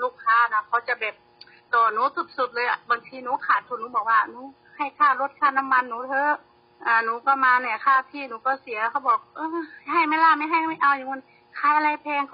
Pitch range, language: 235-280 Hz, Thai